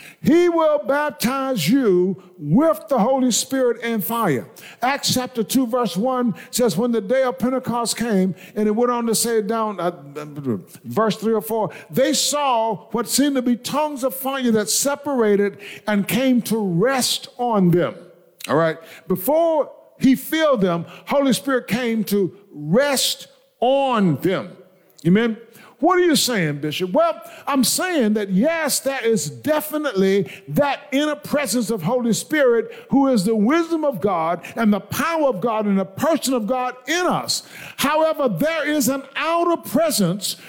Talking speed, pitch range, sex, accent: 160 wpm, 210-290 Hz, male, American